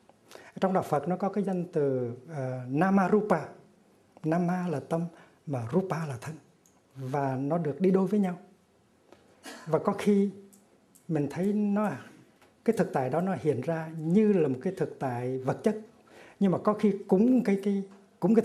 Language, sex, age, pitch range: Korean, male, 60-79, 155-195 Hz